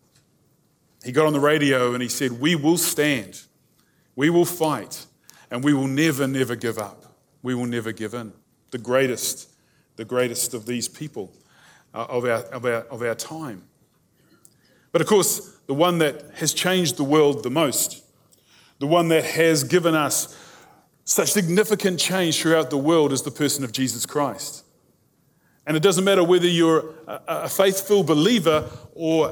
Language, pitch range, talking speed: English, 140-175 Hz, 170 wpm